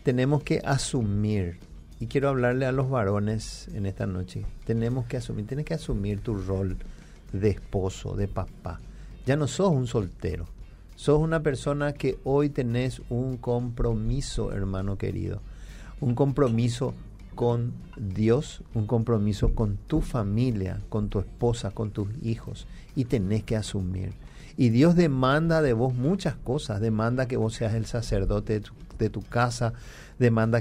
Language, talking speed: Spanish, 150 wpm